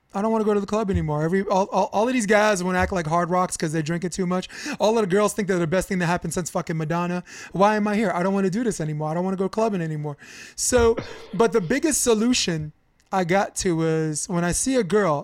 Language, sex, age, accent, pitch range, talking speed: English, male, 20-39, American, 165-215 Hz, 290 wpm